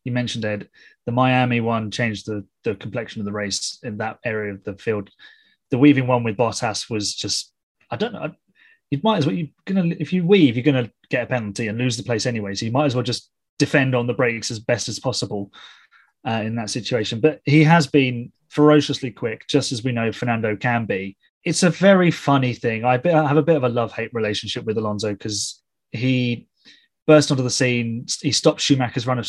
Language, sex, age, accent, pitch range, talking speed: English, male, 30-49, British, 115-140 Hz, 220 wpm